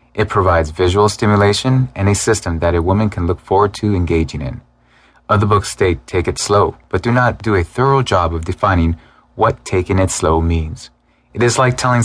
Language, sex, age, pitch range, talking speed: English, male, 30-49, 85-105 Hz, 200 wpm